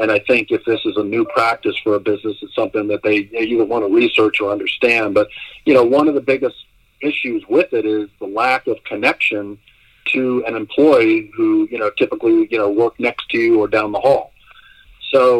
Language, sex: English, male